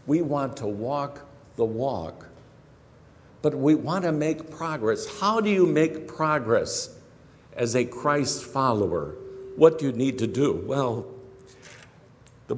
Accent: American